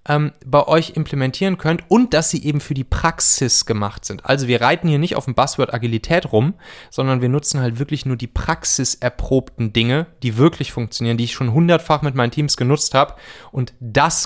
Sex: male